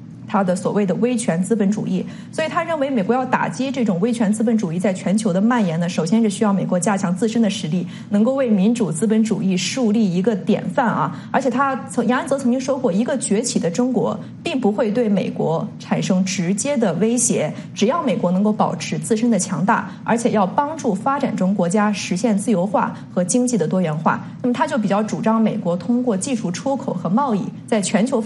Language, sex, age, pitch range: English, female, 30-49, 195-245 Hz